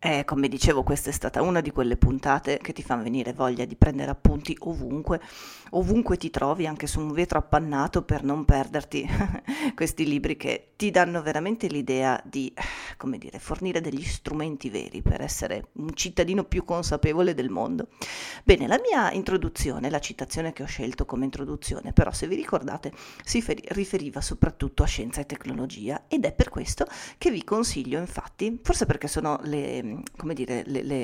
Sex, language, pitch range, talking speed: female, Italian, 140-185 Hz, 175 wpm